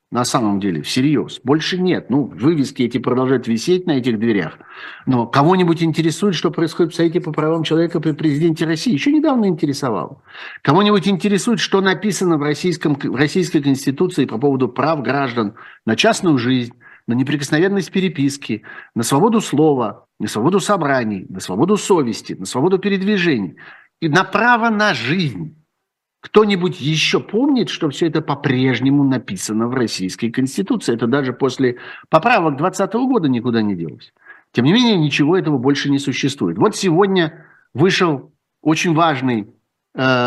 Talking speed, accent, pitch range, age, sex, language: 150 wpm, native, 130-180 Hz, 50-69, male, Russian